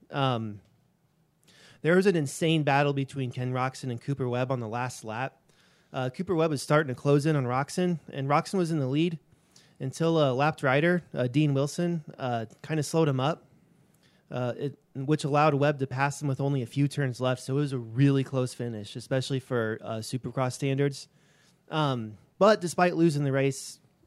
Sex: male